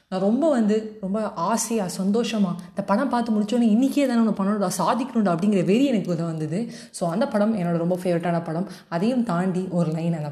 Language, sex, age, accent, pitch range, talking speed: Tamil, female, 20-39, native, 170-225 Hz, 180 wpm